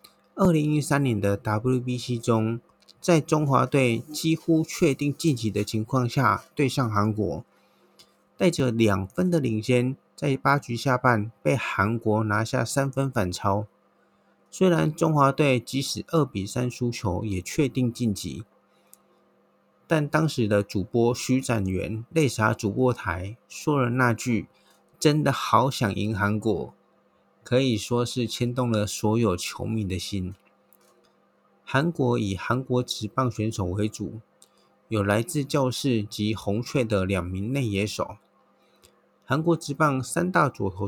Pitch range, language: 105-140 Hz, Chinese